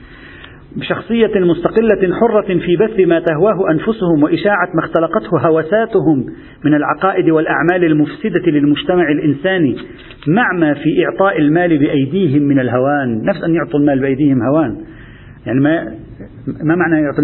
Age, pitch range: 50-69, 145-195 Hz